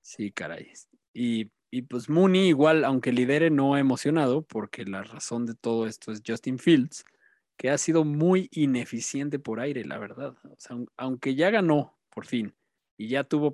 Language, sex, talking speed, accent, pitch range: Spanish, male, 175 wpm, Mexican, 120-150 Hz